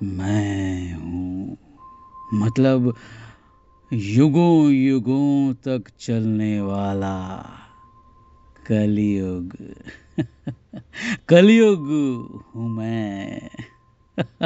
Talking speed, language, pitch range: 50 wpm, Hindi, 105-175 Hz